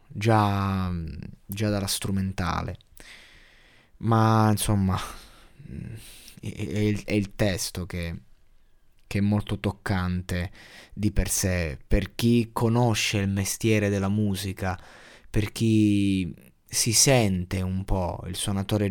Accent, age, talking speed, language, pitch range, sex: native, 20-39, 105 wpm, Italian, 95-110 Hz, male